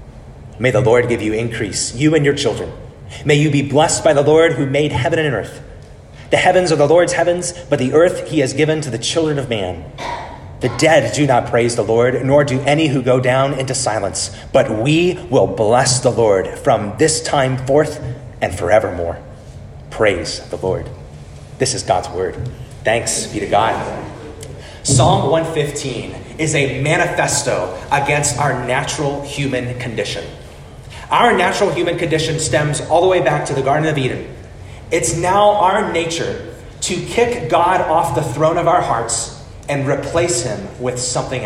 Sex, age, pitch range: male, 30-49, 125-165 Hz